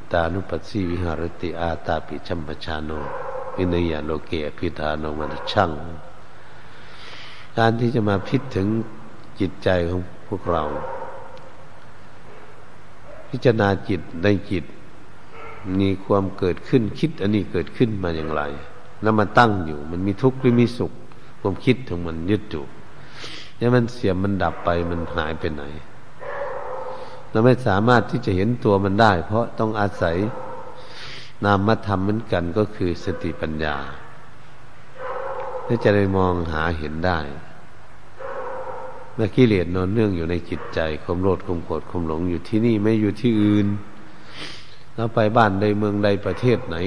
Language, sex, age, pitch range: Thai, male, 60-79, 85-115 Hz